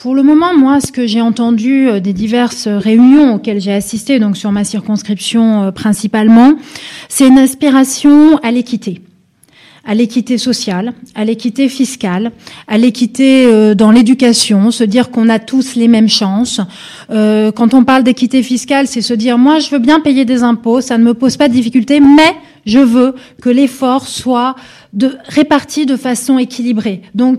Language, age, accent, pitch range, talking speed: French, 20-39, French, 220-265 Hz, 165 wpm